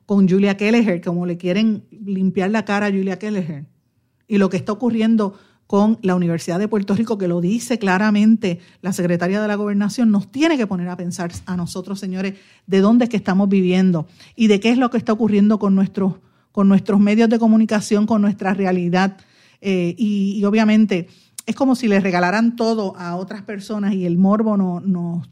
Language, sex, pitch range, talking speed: Spanish, female, 185-220 Hz, 190 wpm